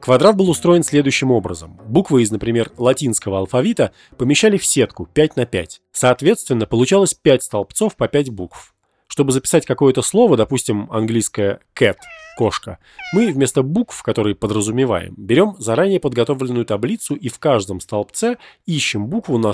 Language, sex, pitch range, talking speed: Russian, male, 105-150 Hz, 145 wpm